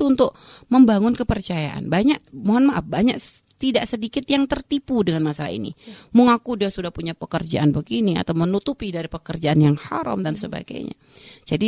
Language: Indonesian